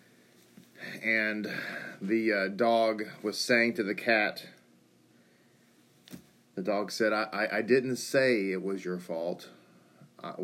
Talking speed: 125 wpm